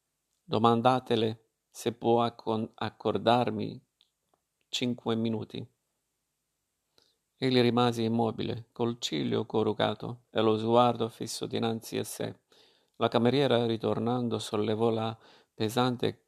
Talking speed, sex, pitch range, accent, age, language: 90 wpm, male, 115-125 Hz, native, 50-69, Italian